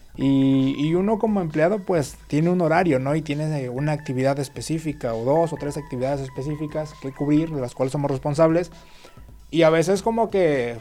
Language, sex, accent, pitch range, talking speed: Spanish, male, Mexican, 130-165 Hz, 185 wpm